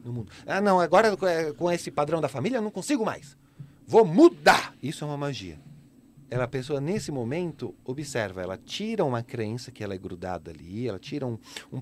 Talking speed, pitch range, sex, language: 200 wpm, 125-175 Hz, male, Portuguese